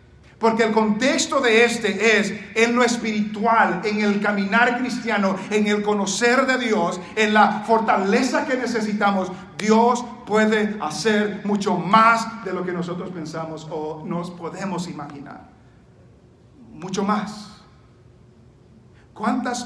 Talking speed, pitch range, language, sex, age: 120 wpm, 155-220 Hz, English, male, 50-69